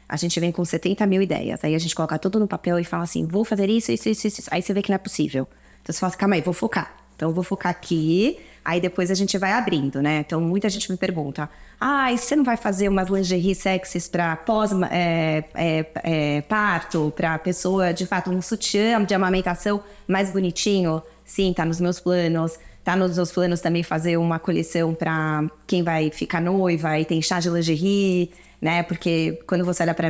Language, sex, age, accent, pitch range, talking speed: Portuguese, female, 20-39, Brazilian, 165-185 Hz, 215 wpm